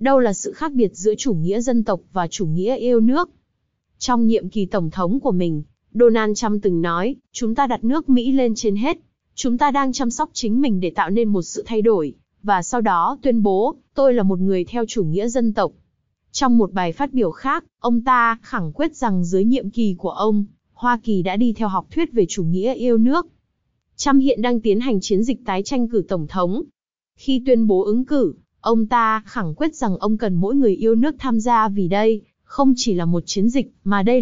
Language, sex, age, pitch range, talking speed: Vietnamese, female, 20-39, 200-250 Hz, 230 wpm